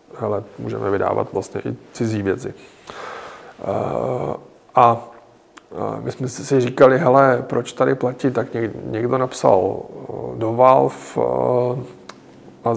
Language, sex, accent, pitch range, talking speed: Czech, male, native, 105-120 Hz, 105 wpm